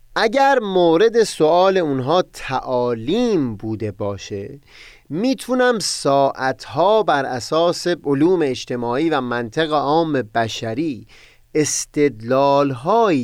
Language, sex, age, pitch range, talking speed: Persian, male, 30-49, 120-185 Hz, 80 wpm